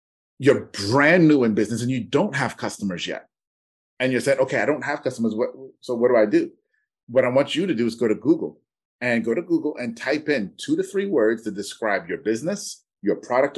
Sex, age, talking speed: male, 30-49, 230 wpm